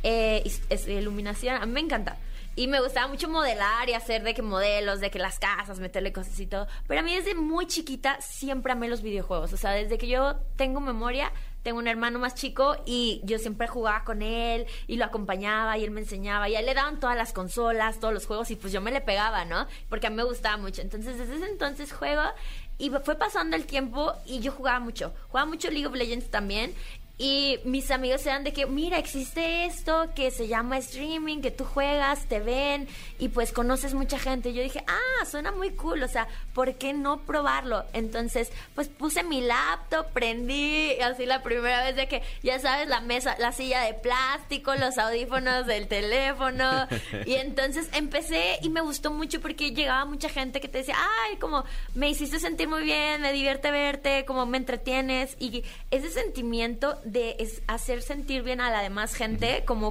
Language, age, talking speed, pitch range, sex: Spanish, 20-39, 205 wpm, 225-280 Hz, female